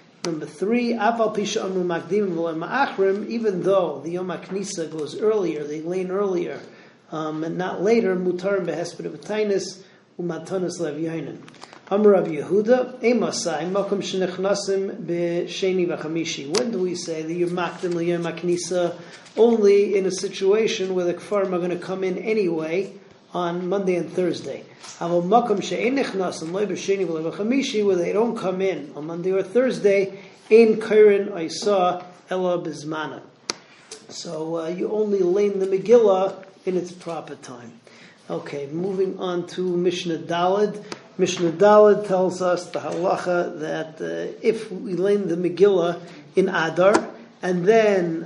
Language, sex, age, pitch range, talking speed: English, male, 40-59, 170-200 Hz, 140 wpm